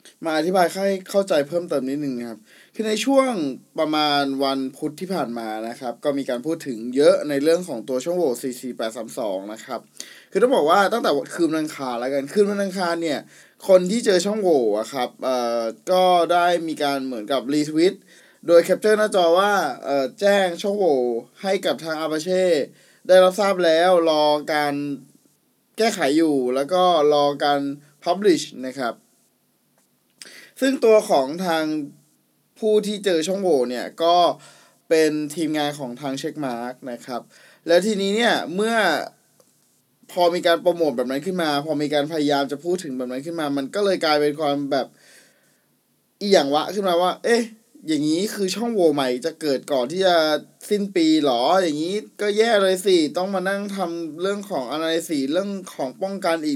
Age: 20-39